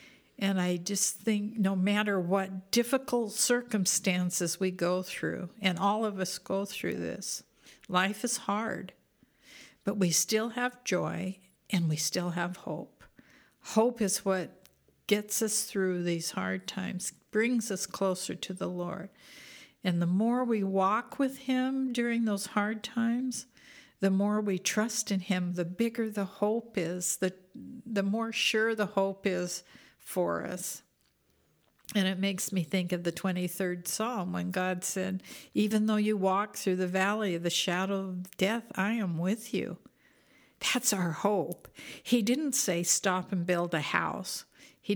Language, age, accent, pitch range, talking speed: English, 60-79, American, 185-225 Hz, 160 wpm